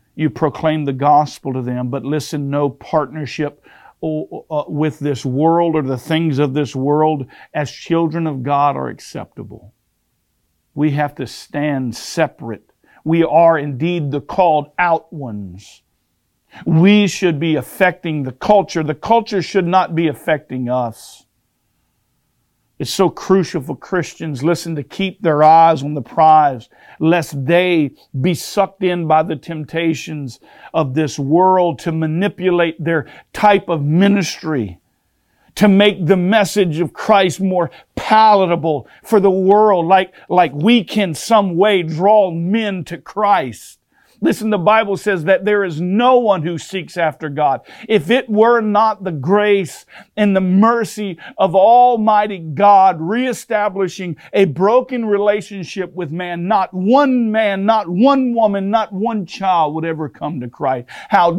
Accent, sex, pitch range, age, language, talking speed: American, male, 150-200 Hz, 50-69, English, 145 wpm